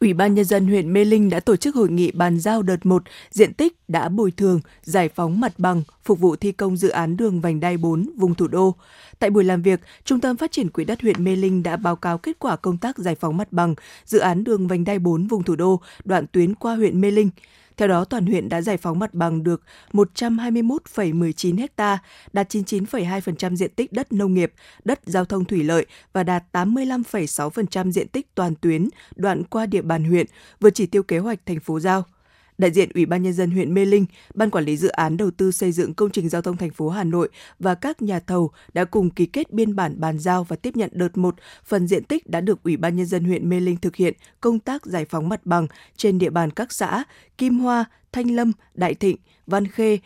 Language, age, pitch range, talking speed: Vietnamese, 20-39, 175-210 Hz, 235 wpm